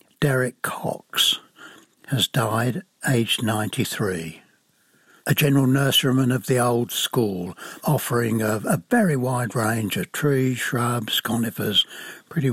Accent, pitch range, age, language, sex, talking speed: British, 115-135 Hz, 60-79, English, male, 115 wpm